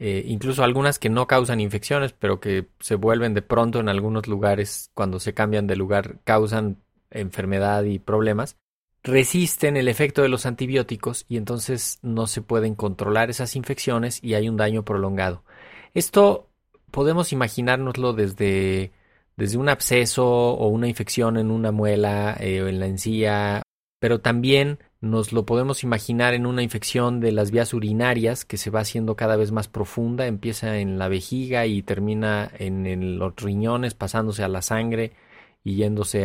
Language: Spanish